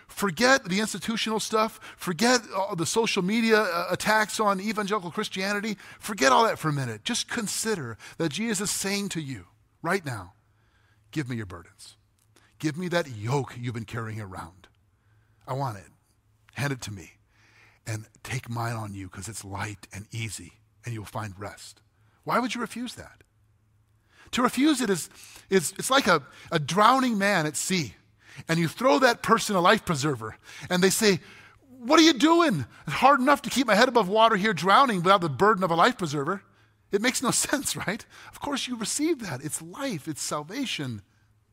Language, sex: English, male